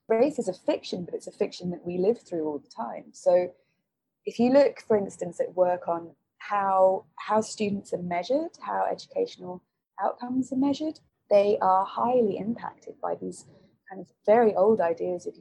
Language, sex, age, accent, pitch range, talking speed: English, female, 20-39, British, 175-235 Hz, 180 wpm